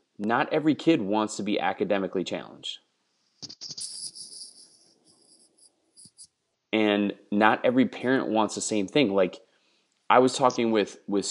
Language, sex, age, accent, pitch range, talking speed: English, male, 30-49, American, 95-120 Hz, 115 wpm